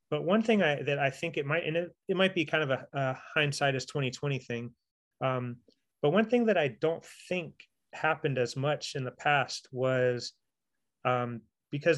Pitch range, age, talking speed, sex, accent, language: 130-155 Hz, 30-49, 200 wpm, male, American, English